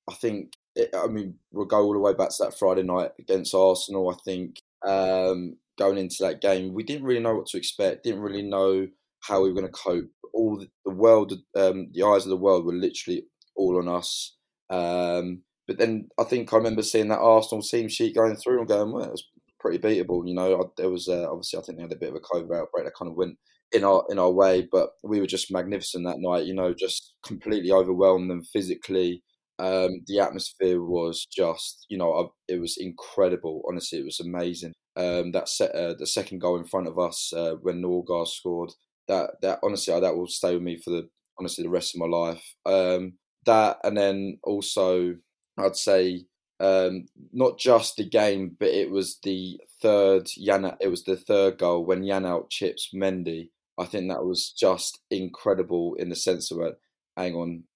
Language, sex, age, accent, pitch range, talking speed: English, male, 20-39, British, 90-100 Hz, 210 wpm